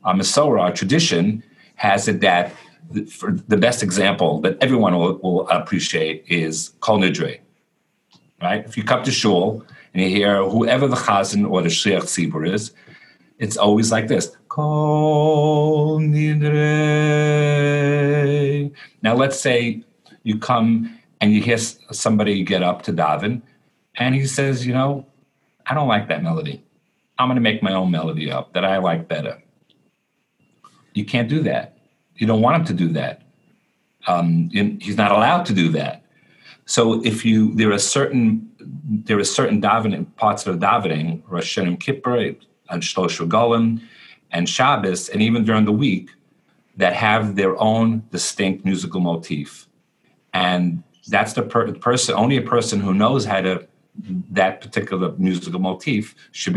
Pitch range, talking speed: 95-140 Hz, 155 wpm